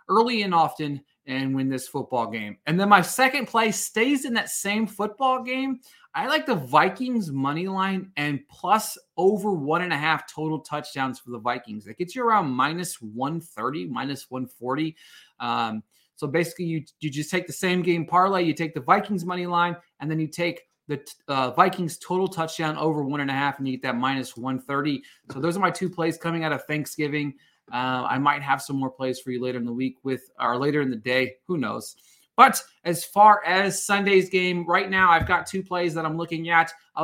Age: 20-39